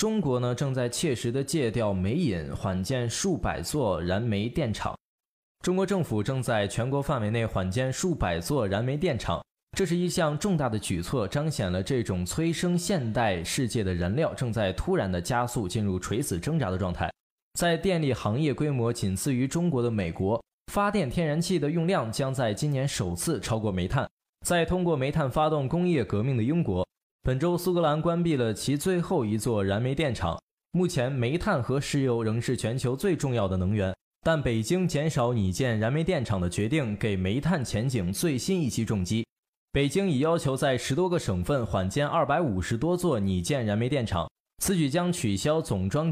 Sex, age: male, 20-39